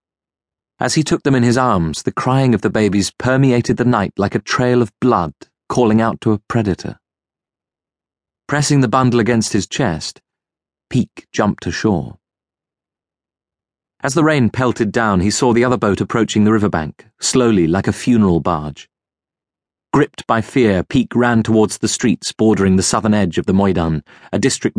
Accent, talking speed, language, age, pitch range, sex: British, 165 wpm, English, 30-49, 90-115 Hz, male